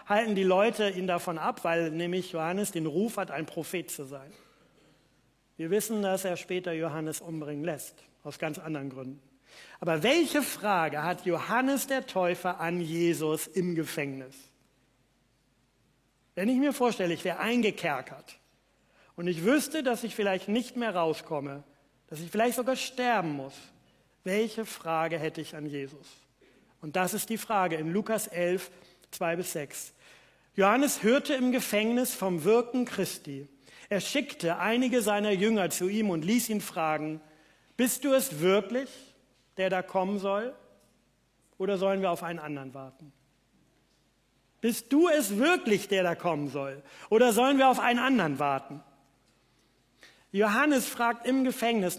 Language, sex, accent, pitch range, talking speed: German, male, German, 155-230 Hz, 150 wpm